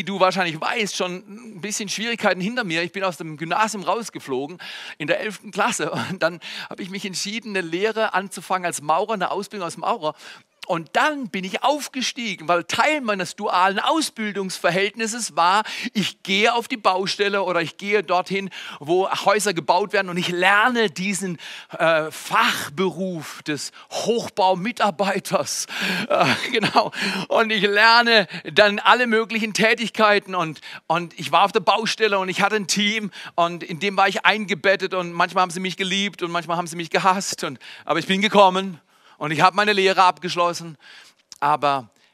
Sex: male